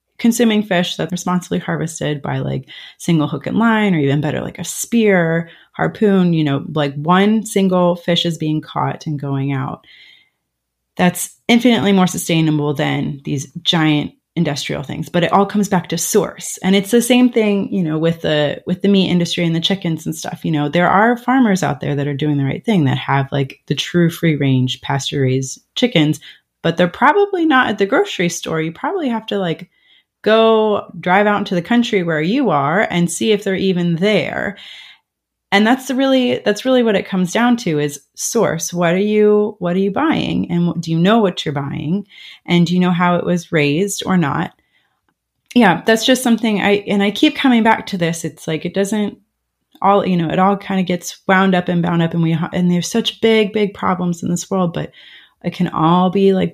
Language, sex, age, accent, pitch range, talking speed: English, female, 30-49, American, 160-205 Hz, 210 wpm